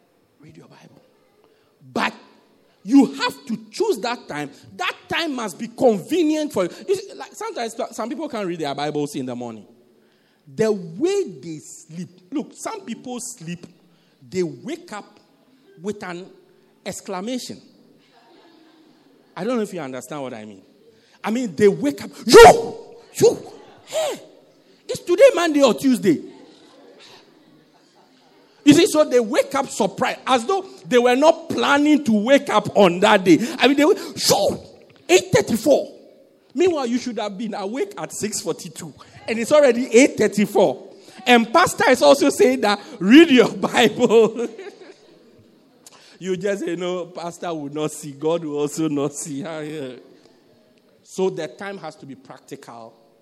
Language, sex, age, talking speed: English, male, 50-69, 150 wpm